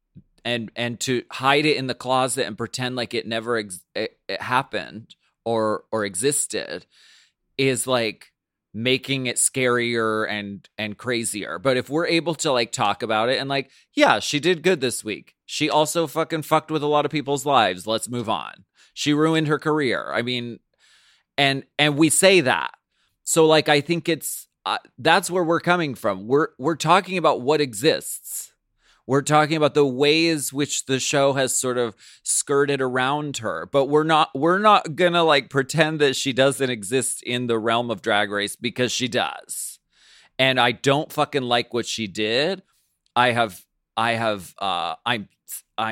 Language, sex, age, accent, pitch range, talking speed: English, male, 30-49, American, 115-150 Hz, 175 wpm